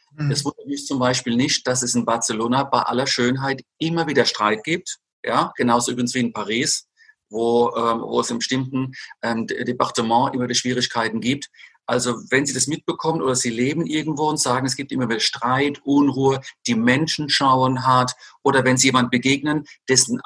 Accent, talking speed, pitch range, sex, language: German, 185 wpm, 120-140 Hz, male, German